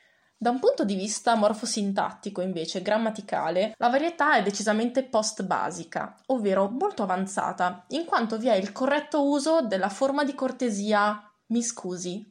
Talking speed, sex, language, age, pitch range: 140 wpm, female, Italian, 20-39, 195-250 Hz